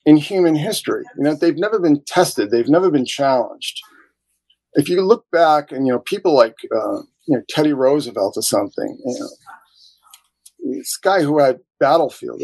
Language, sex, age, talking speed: English, male, 40-59, 175 wpm